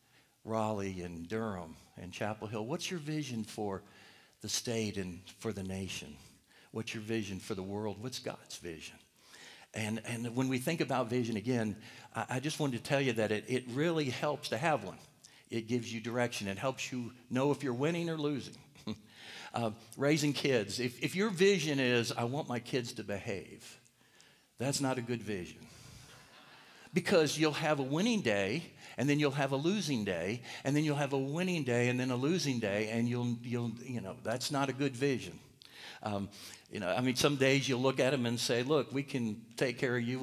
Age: 60-79